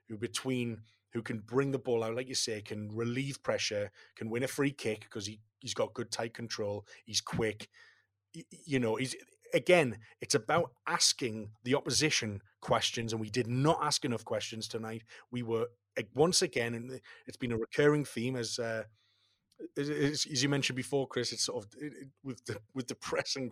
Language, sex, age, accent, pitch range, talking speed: English, male, 30-49, British, 110-150 Hz, 185 wpm